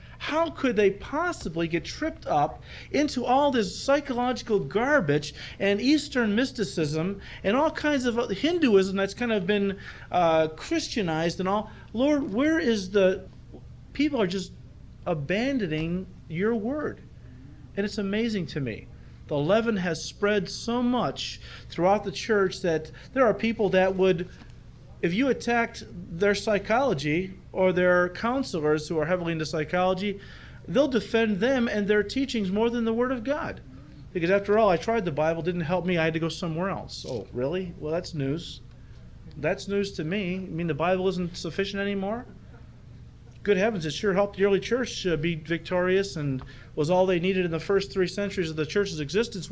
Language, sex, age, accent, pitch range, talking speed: English, male, 40-59, American, 170-220 Hz, 170 wpm